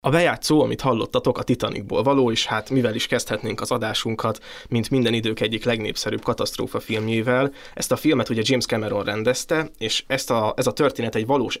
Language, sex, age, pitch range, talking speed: Hungarian, male, 20-39, 110-125 Hz, 185 wpm